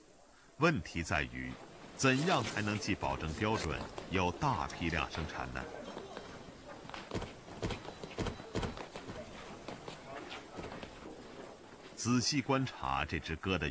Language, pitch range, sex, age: Chinese, 80-125 Hz, male, 50-69